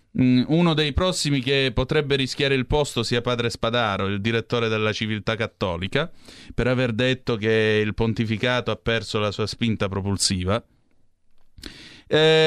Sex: male